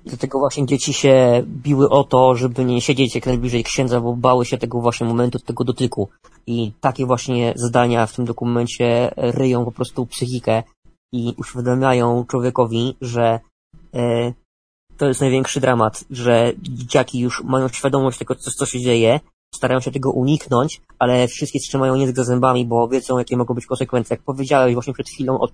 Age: 20-39